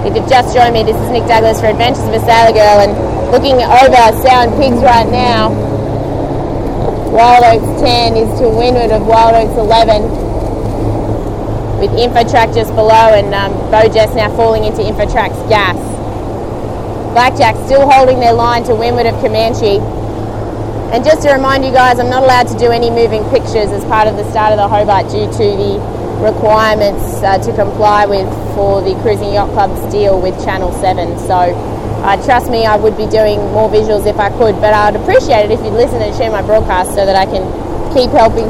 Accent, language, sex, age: Australian, English, female, 20-39